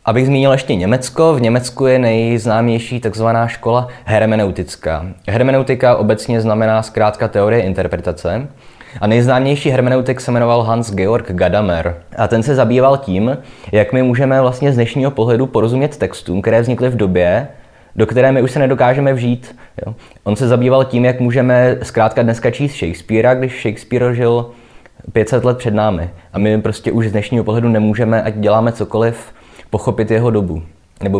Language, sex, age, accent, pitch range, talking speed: Czech, male, 20-39, native, 105-130 Hz, 155 wpm